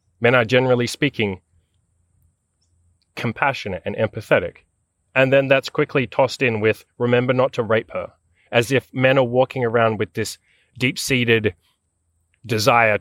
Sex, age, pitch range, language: male, 20-39, 95-125 Hz, English